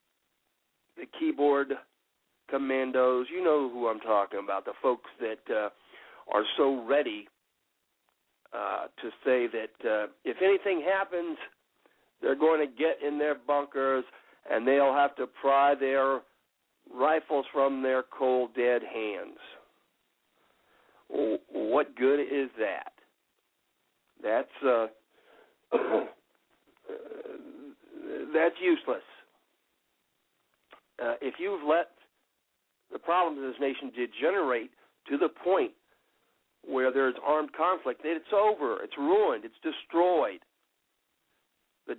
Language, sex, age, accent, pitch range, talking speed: English, male, 60-79, American, 130-200 Hz, 110 wpm